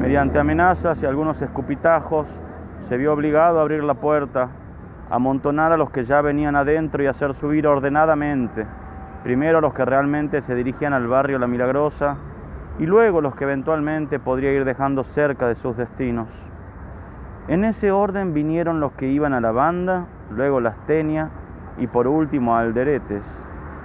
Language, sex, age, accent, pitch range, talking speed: Spanish, male, 30-49, Argentinian, 120-155 Hz, 165 wpm